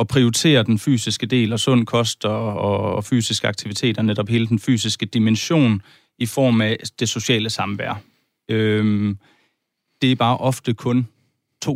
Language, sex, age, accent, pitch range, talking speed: Danish, male, 30-49, native, 115-145 Hz, 150 wpm